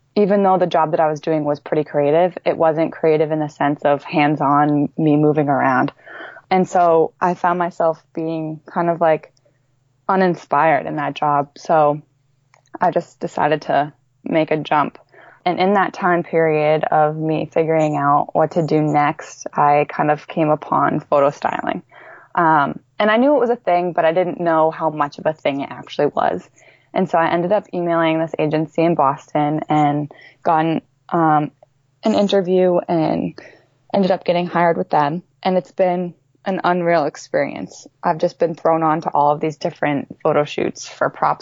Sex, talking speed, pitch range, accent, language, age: female, 180 wpm, 150-175 Hz, American, English, 20-39